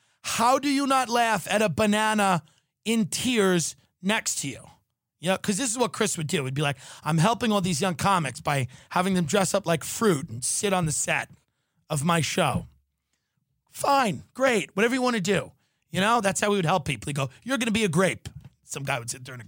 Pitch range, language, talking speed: 155-220 Hz, English, 235 wpm